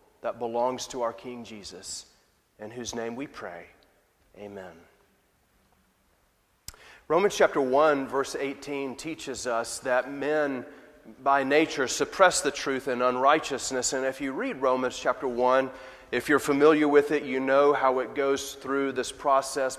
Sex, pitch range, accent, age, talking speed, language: male, 130-155 Hz, American, 30-49, 145 wpm, English